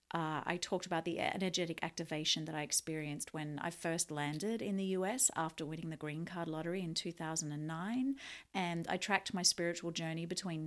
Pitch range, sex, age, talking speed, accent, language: 155-190 Hz, female, 30-49, 180 wpm, Australian, English